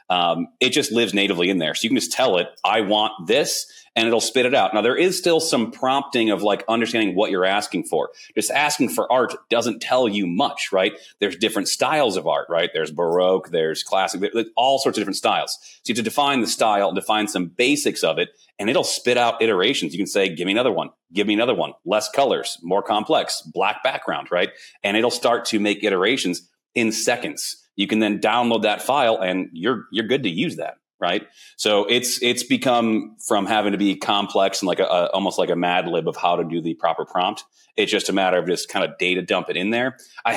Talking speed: 230 wpm